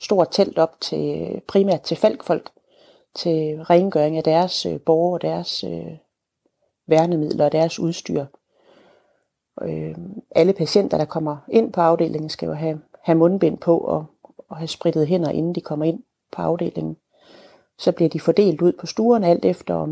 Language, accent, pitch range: Danish, native, 155-180 Hz